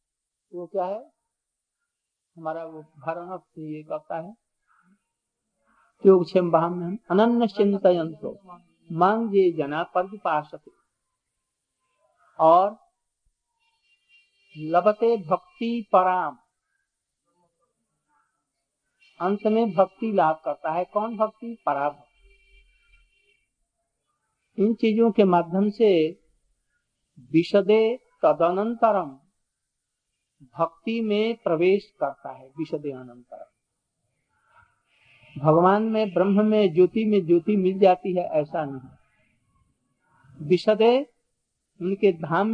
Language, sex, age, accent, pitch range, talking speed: Hindi, male, 50-69, native, 165-220 Hz, 75 wpm